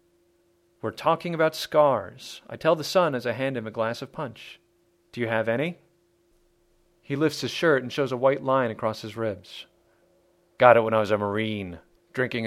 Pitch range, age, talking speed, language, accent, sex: 115-175 Hz, 40-59, 190 wpm, English, American, male